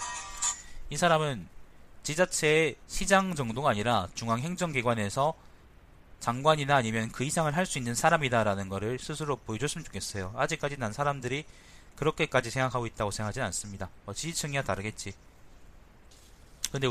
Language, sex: Korean, male